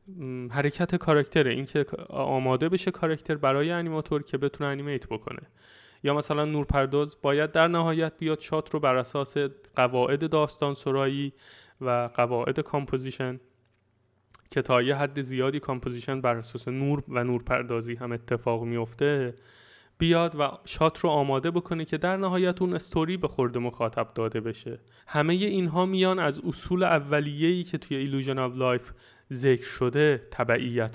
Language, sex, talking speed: Persian, male, 140 wpm